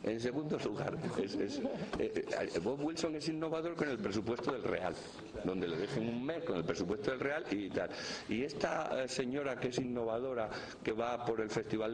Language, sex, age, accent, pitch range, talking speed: Spanish, male, 60-79, Spanish, 110-140 Hz, 190 wpm